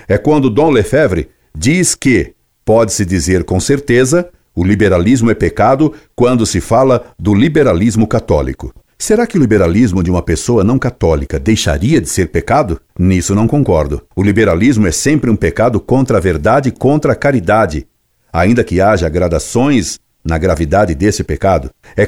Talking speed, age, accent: 160 wpm, 60-79, Brazilian